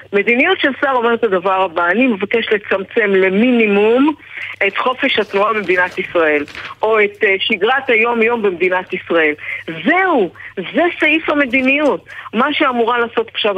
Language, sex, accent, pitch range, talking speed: Hebrew, female, native, 195-270 Hz, 135 wpm